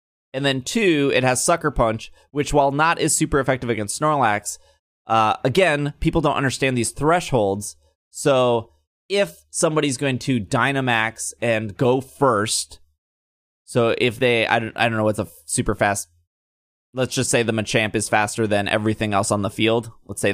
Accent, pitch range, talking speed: American, 110-145 Hz, 175 wpm